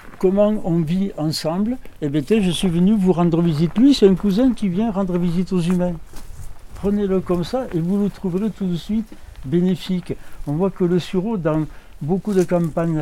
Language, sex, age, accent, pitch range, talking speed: French, male, 60-79, French, 145-190 Hz, 200 wpm